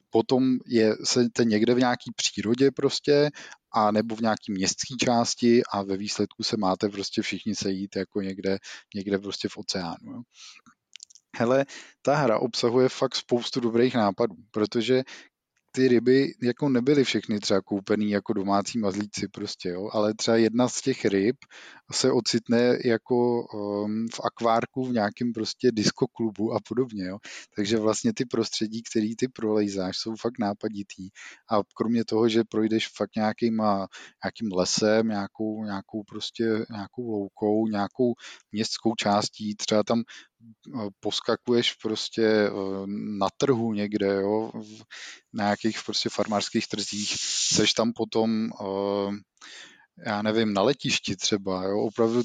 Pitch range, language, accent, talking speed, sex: 105-120 Hz, Czech, native, 130 wpm, male